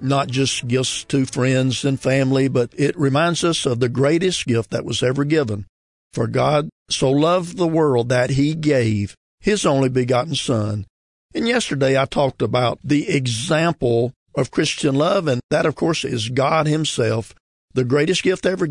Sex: male